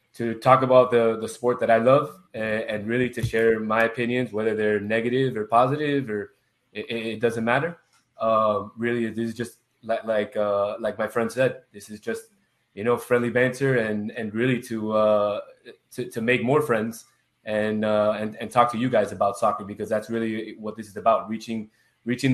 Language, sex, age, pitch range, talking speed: English, male, 20-39, 110-125 Hz, 200 wpm